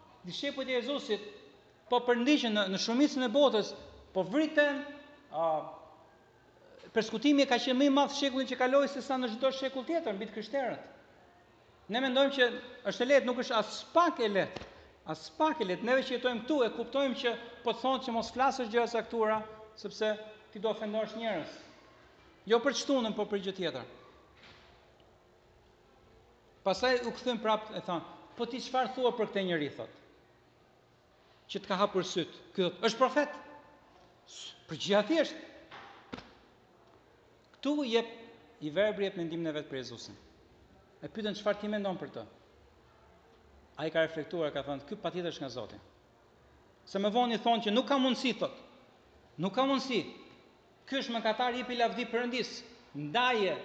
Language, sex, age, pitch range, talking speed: English, male, 40-59, 195-255 Hz, 110 wpm